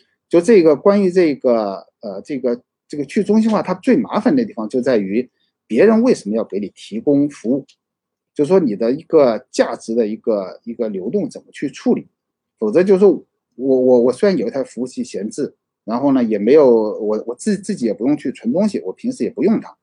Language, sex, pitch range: Chinese, male, 140-235 Hz